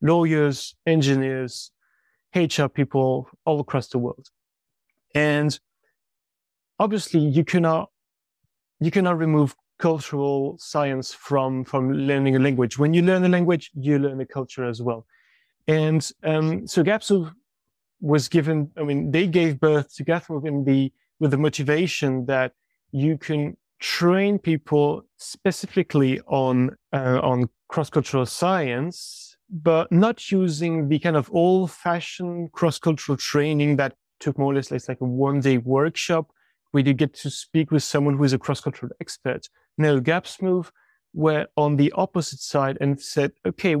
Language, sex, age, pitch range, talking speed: English, male, 30-49, 140-165 Hz, 140 wpm